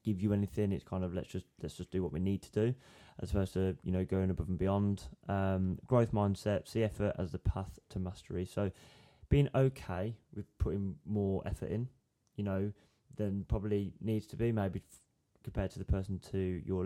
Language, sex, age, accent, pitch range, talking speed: English, male, 20-39, British, 95-110 Hz, 205 wpm